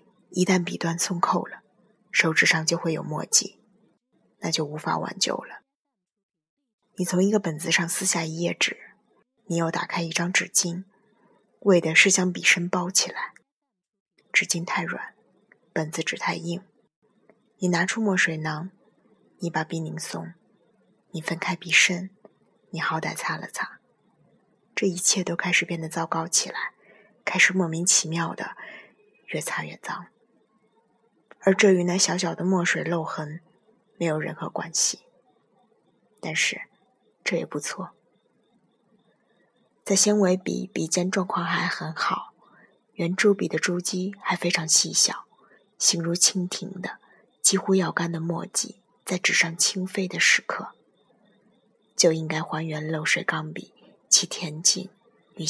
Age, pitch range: 20-39, 165-200 Hz